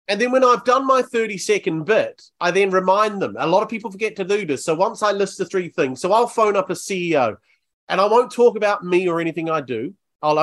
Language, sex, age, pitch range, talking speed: English, male, 30-49, 155-215 Hz, 260 wpm